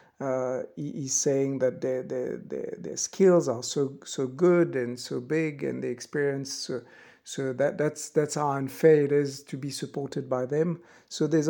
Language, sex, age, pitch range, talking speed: English, male, 60-79, 135-160 Hz, 190 wpm